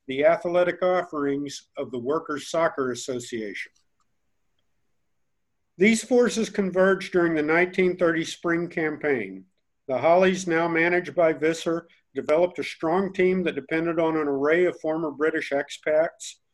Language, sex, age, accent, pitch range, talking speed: English, male, 50-69, American, 155-180 Hz, 125 wpm